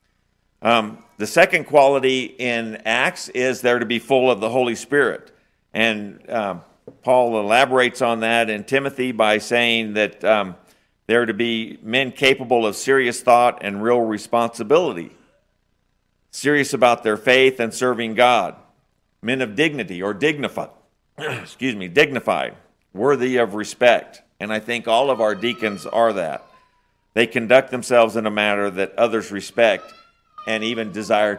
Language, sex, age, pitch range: English, male, 50-69, 110-130 Hz